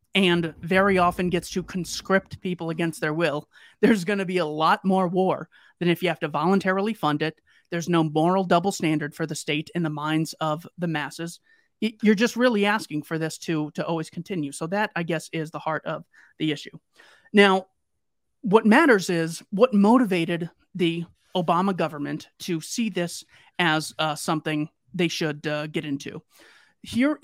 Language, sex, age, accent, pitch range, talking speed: English, male, 30-49, American, 160-195 Hz, 180 wpm